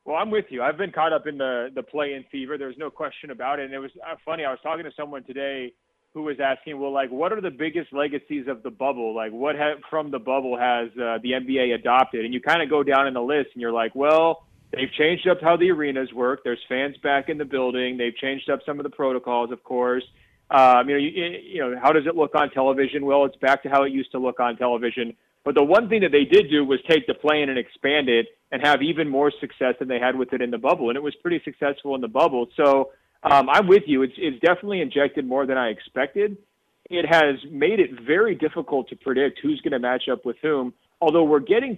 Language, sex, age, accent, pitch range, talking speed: English, male, 30-49, American, 125-155 Hz, 255 wpm